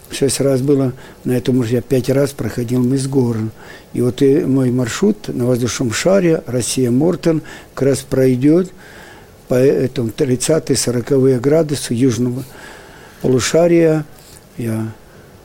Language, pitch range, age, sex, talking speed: Russian, 125-145 Hz, 60-79, male, 120 wpm